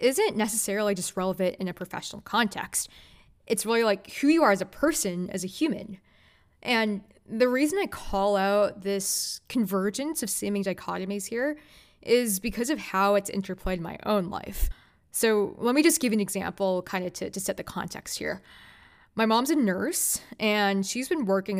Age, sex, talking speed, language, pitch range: 20-39, female, 180 wpm, English, 190-240 Hz